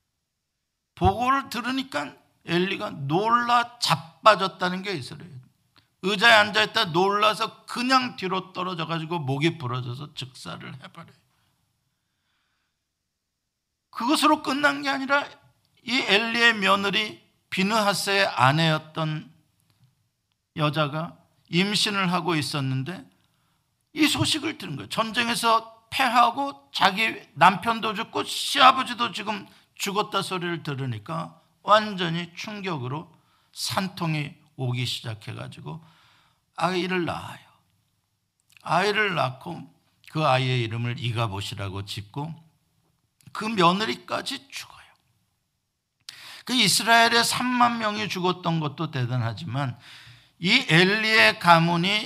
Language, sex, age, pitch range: Korean, male, 50-69, 130-215 Hz